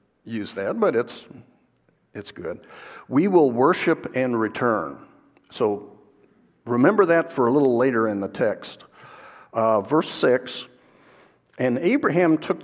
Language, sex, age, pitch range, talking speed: English, male, 60-79, 110-130 Hz, 130 wpm